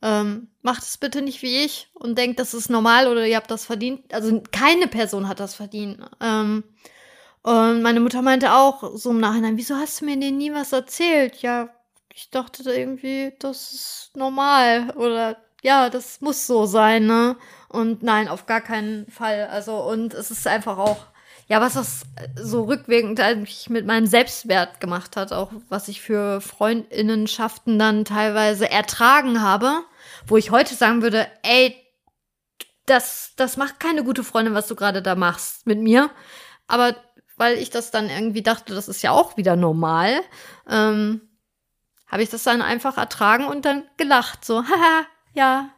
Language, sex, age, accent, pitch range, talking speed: German, female, 20-39, German, 215-260 Hz, 170 wpm